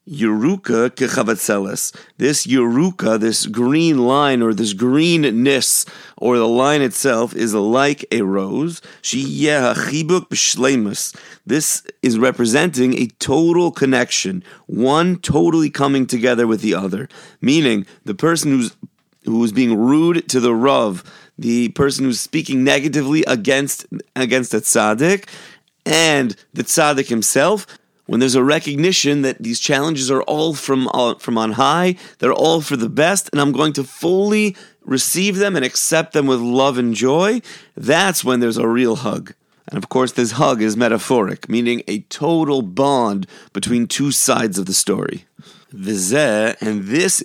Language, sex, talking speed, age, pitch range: English, male, 145 wpm, 30-49, 120-155 Hz